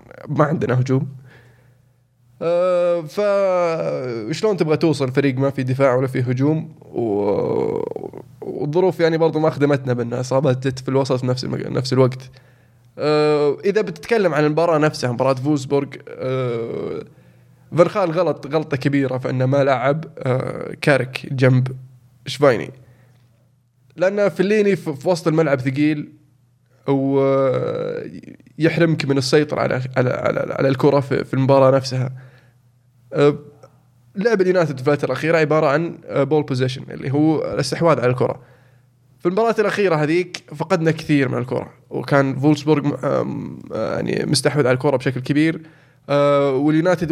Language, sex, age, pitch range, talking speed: Arabic, male, 20-39, 130-160 Hz, 125 wpm